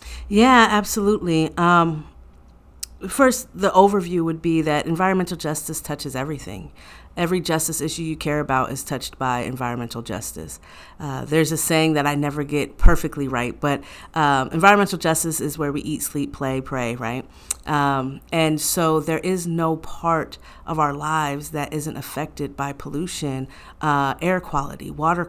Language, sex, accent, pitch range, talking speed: English, female, American, 145-165 Hz, 155 wpm